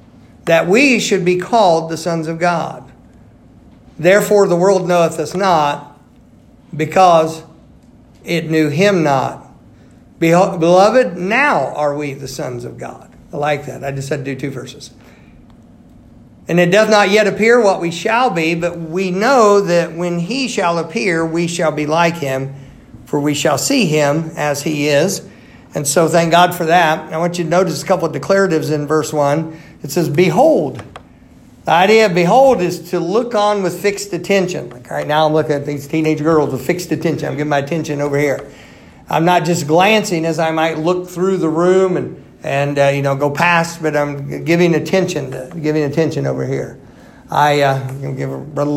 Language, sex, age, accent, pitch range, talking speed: English, male, 50-69, American, 145-180 Hz, 190 wpm